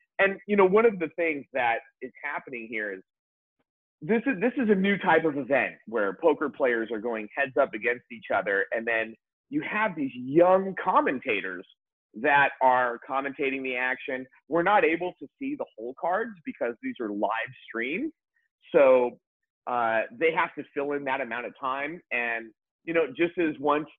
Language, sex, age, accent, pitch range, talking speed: English, male, 30-49, American, 120-185 Hz, 185 wpm